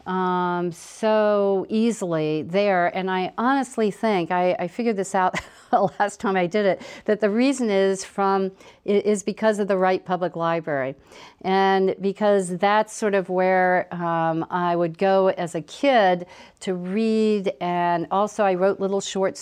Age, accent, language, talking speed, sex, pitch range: 50-69, American, English, 160 wpm, female, 180-210 Hz